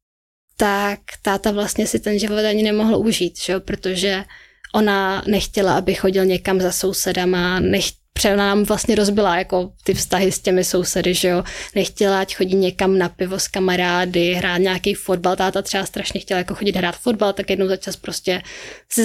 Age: 20-39